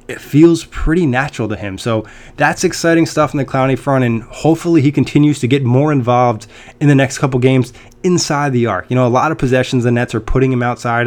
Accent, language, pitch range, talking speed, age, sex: American, English, 120-130 Hz, 230 wpm, 20-39, male